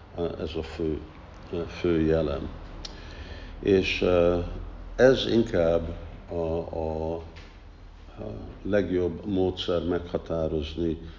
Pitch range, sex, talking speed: 80-90 Hz, male, 70 wpm